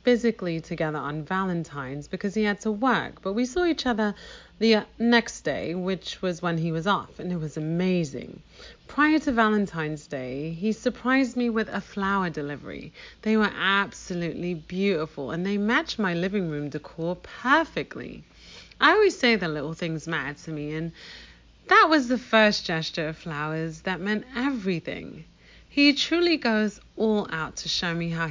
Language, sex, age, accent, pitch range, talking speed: English, female, 30-49, British, 160-220 Hz, 165 wpm